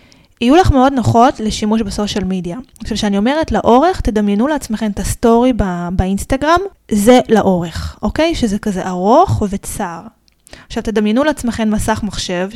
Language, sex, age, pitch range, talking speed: Hebrew, female, 20-39, 185-235 Hz, 140 wpm